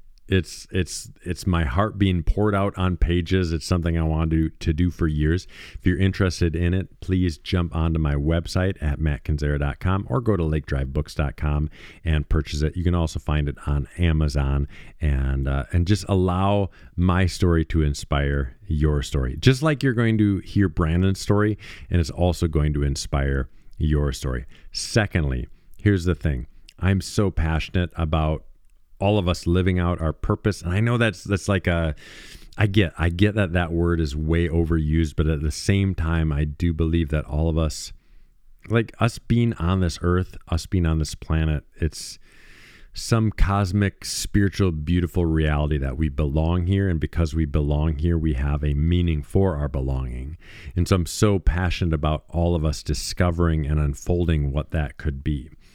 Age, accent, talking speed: 50-69, American, 180 wpm